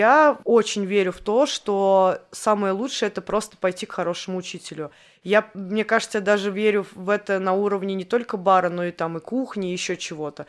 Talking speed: 195 wpm